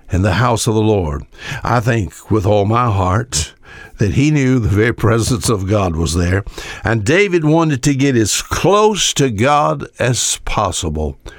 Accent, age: American, 60-79